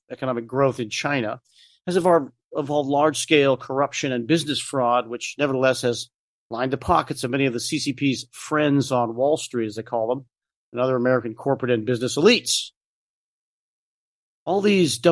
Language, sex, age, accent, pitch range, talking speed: English, male, 40-59, American, 125-155 Hz, 170 wpm